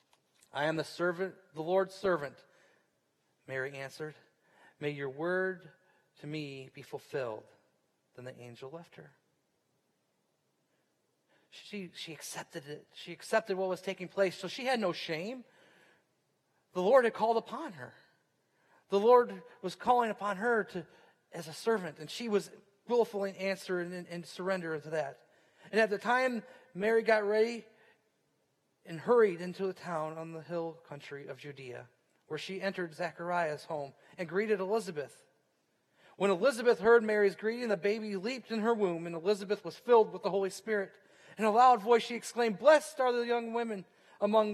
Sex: male